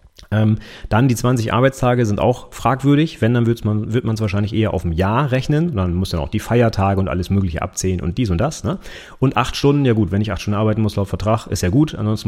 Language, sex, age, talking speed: German, male, 30-49, 250 wpm